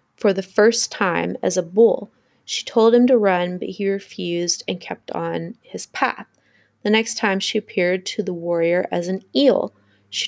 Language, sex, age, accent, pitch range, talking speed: English, female, 20-39, American, 180-225 Hz, 185 wpm